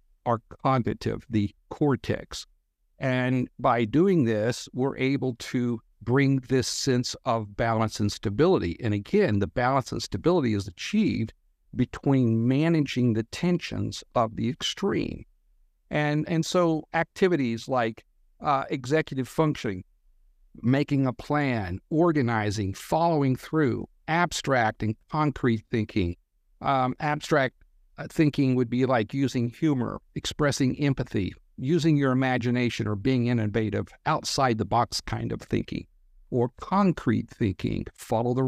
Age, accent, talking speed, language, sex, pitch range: 50-69, American, 120 wpm, English, male, 110-150 Hz